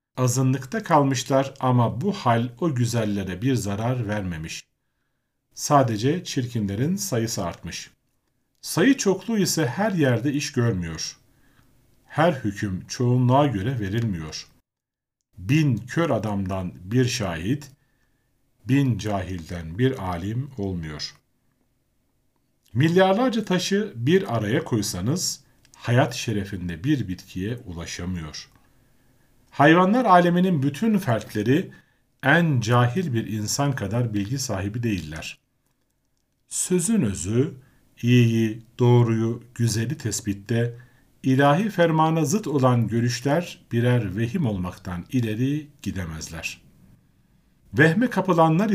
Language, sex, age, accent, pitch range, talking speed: Turkish, male, 50-69, native, 105-145 Hz, 95 wpm